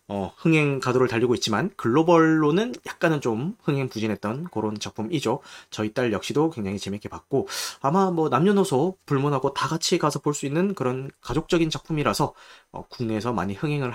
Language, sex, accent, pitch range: Korean, male, native, 110-170 Hz